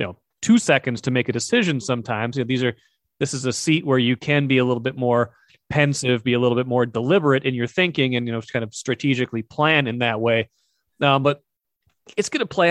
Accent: American